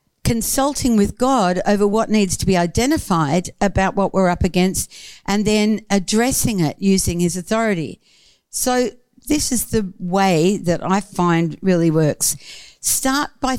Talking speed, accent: 145 wpm, Australian